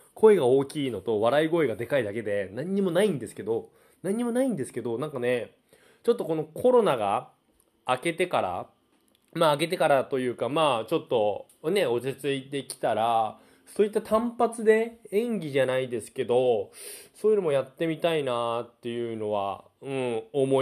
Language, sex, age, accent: Japanese, male, 20-39, native